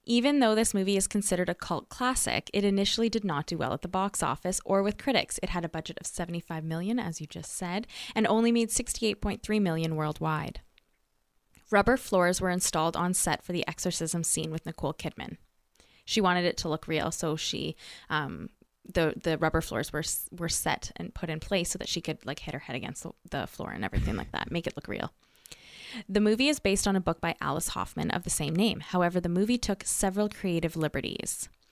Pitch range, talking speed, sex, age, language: 165-210 Hz, 210 wpm, female, 20-39, English